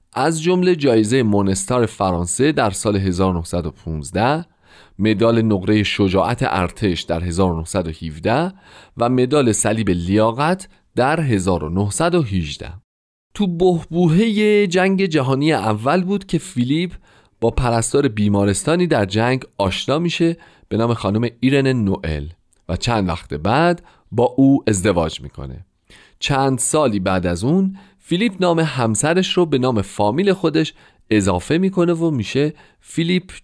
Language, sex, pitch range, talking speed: Persian, male, 95-155 Hz, 120 wpm